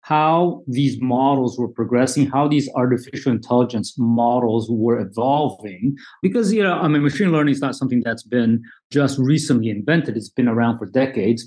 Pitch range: 120-145 Hz